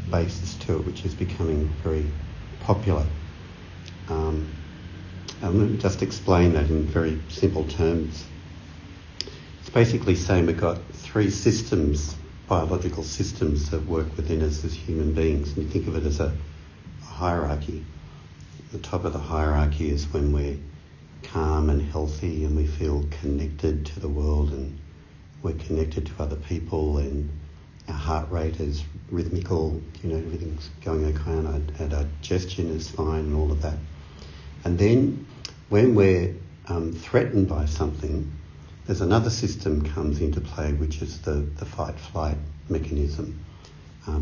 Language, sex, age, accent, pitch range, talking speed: English, male, 60-79, Australian, 75-90 Hz, 150 wpm